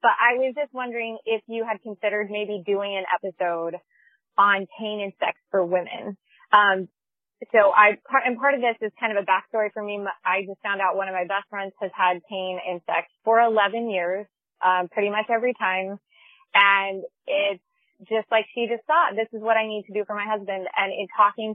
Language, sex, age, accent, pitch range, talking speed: English, female, 20-39, American, 195-245 Hz, 210 wpm